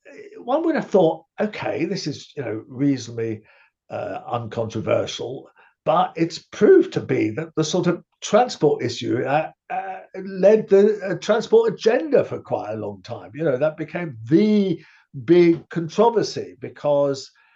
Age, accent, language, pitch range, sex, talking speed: 50-69, British, English, 130-170 Hz, male, 145 wpm